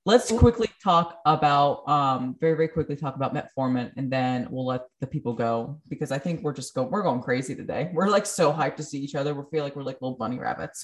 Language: English